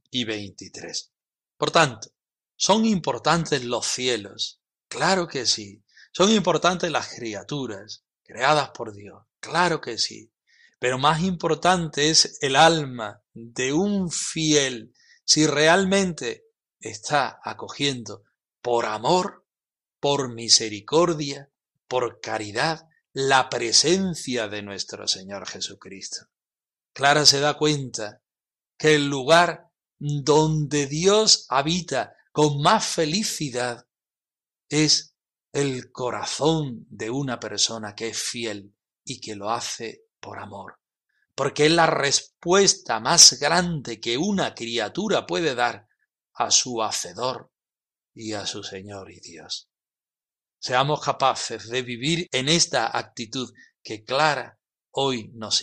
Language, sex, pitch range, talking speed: Spanish, male, 115-160 Hz, 115 wpm